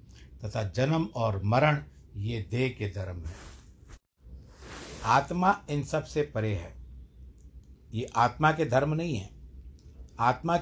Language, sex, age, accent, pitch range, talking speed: Hindi, male, 60-79, native, 95-130 Hz, 125 wpm